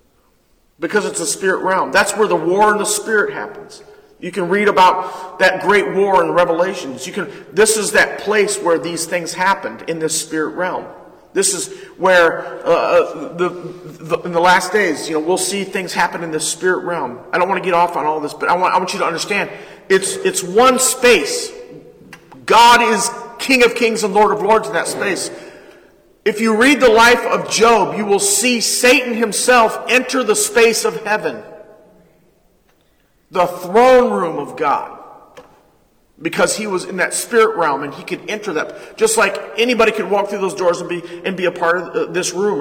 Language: English